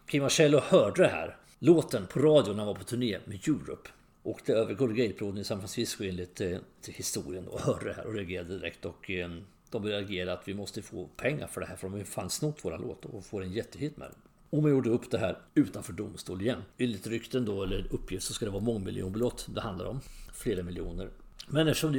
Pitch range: 95-130 Hz